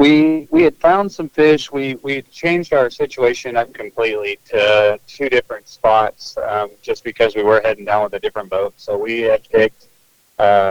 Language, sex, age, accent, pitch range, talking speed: English, male, 30-49, American, 105-130 Hz, 185 wpm